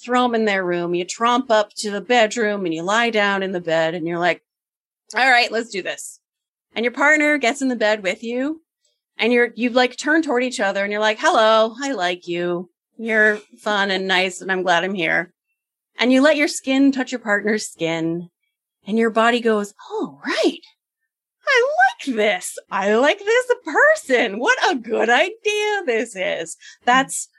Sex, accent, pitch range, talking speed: female, American, 200-275 Hz, 195 wpm